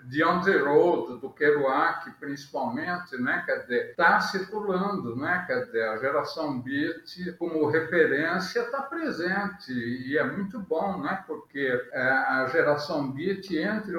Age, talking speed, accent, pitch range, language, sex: 60-79, 130 wpm, Brazilian, 145-185 Hz, Portuguese, male